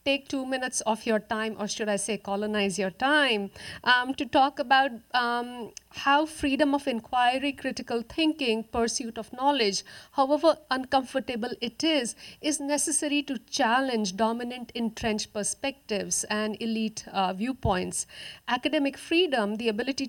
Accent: Indian